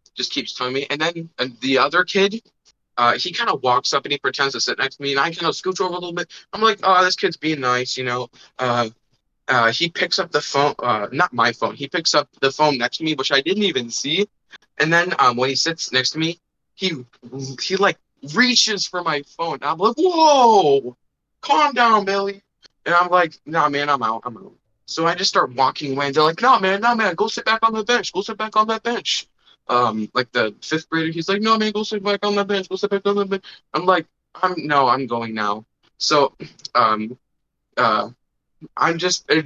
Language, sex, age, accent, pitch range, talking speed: English, male, 20-39, American, 135-200 Hz, 240 wpm